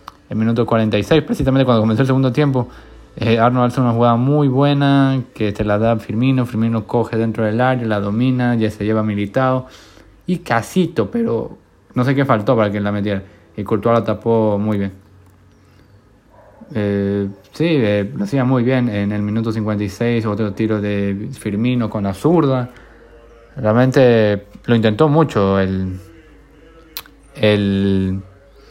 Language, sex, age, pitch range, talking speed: Spanish, male, 20-39, 105-125 Hz, 155 wpm